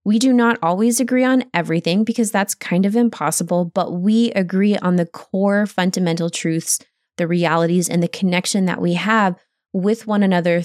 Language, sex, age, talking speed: English, female, 20-39, 175 wpm